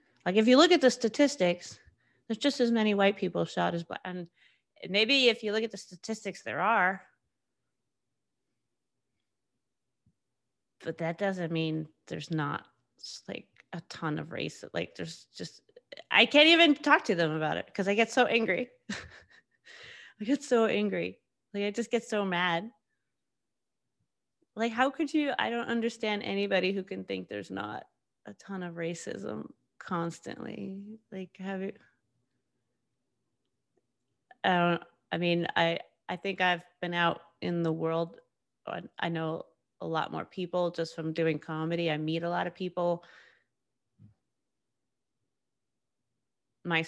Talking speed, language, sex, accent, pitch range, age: 145 wpm, English, female, American, 155-210 Hz, 30-49